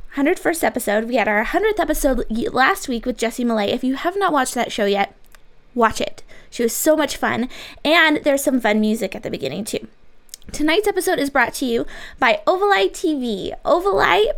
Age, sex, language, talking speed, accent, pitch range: 20-39, female, English, 190 wpm, American, 245-345 Hz